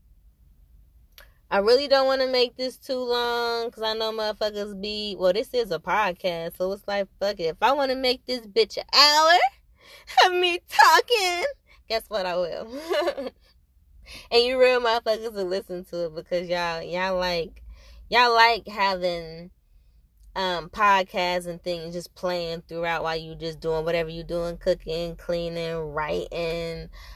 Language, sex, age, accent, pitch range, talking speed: English, female, 20-39, American, 165-245 Hz, 160 wpm